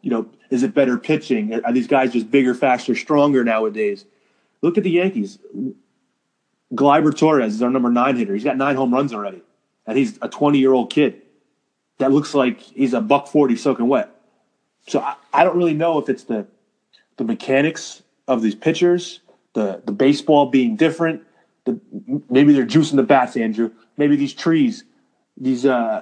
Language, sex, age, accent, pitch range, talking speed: English, male, 30-49, American, 130-170 Hz, 175 wpm